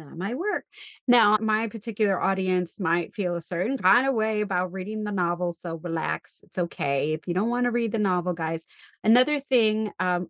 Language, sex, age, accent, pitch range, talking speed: English, female, 30-49, American, 185-225 Hz, 190 wpm